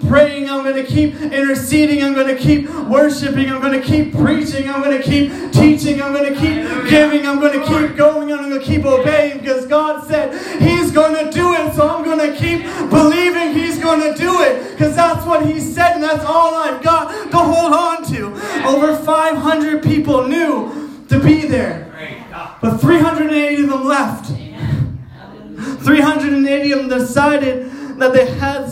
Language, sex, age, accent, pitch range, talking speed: English, male, 20-39, American, 230-300 Hz, 185 wpm